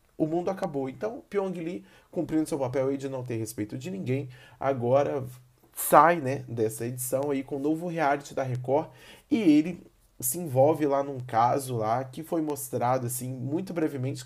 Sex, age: male, 20-39